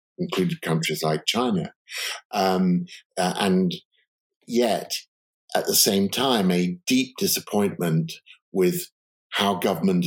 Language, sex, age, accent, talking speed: English, male, 50-69, British, 100 wpm